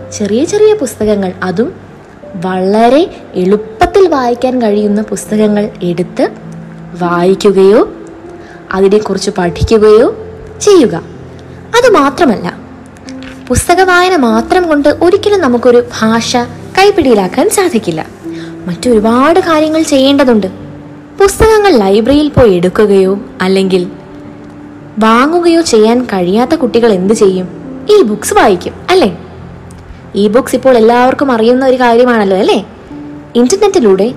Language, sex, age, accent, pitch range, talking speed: Malayalam, female, 20-39, native, 200-285 Hz, 90 wpm